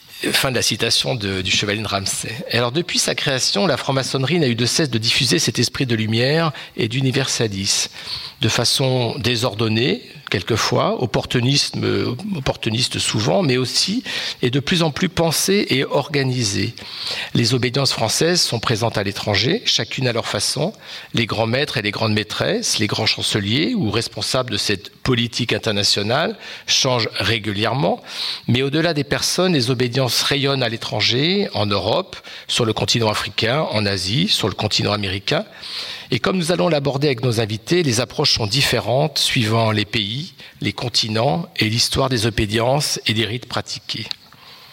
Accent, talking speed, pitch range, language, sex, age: French, 160 wpm, 110-140 Hz, French, male, 50-69